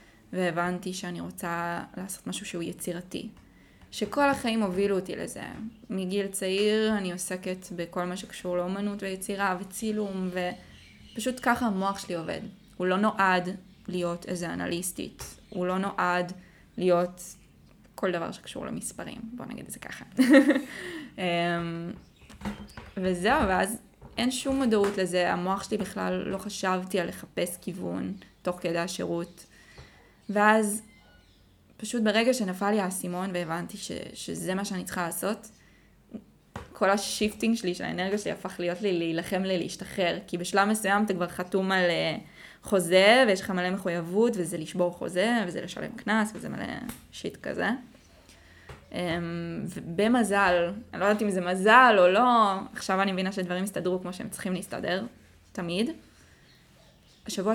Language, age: Hebrew, 20-39